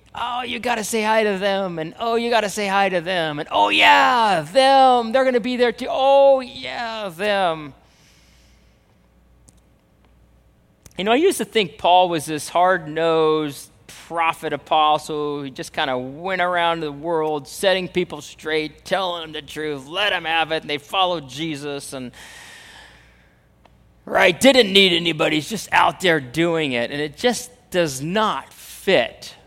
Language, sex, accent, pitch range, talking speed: English, male, American, 145-205 Hz, 160 wpm